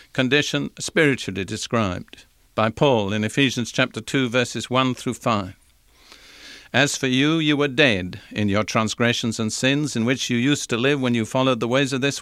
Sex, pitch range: male, 115-140 Hz